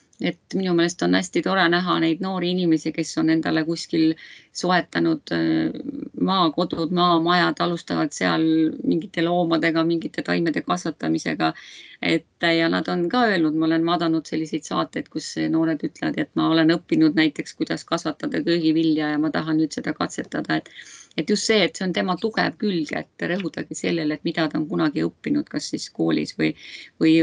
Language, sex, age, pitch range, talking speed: English, female, 30-49, 155-180 Hz, 170 wpm